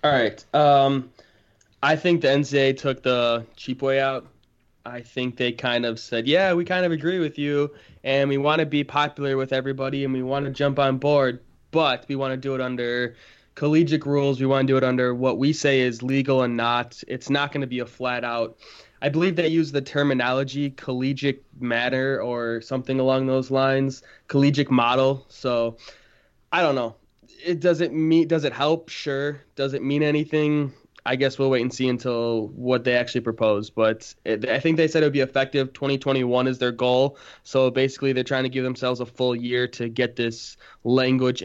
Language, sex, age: English, male, 20-39